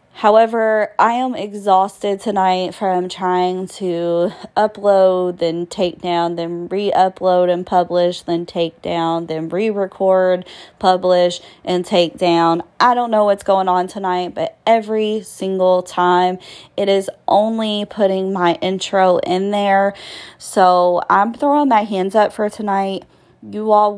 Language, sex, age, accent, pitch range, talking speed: English, female, 20-39, American, 180-205 Hz, 135 wpm